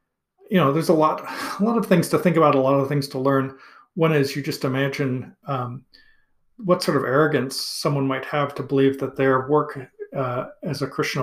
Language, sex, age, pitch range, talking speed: English, male, 40-59, 135-160 Hz, 215 wpm